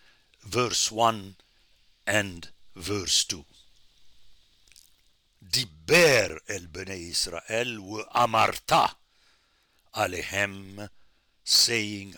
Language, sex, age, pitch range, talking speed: English, male, 60-79, 85-115 Hz, 60 wpm